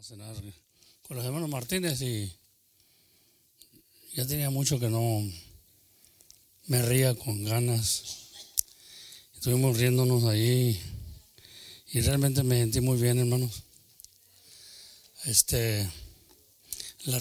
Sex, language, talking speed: male, English, 100 wpm